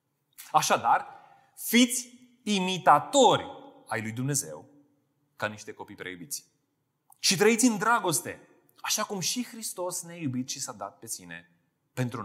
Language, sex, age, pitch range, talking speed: Romanian, male, 30-49, 135-200 Hz, 125 wpm